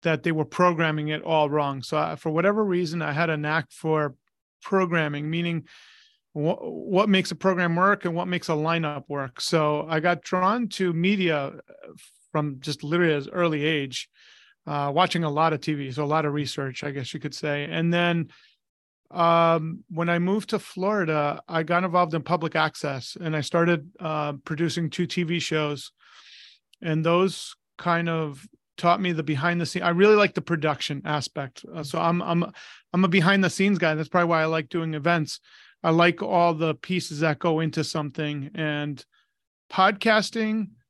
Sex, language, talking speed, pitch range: male, English, 180 wpm, 155-175 Hz